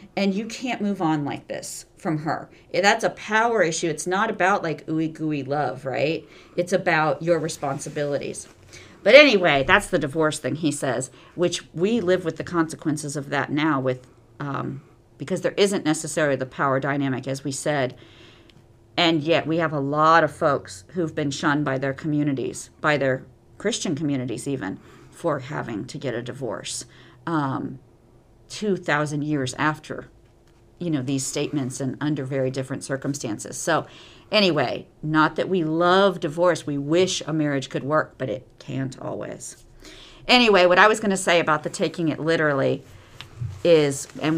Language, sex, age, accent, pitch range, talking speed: English, female, 50-69, American, 135-170 Hz, 165 wpm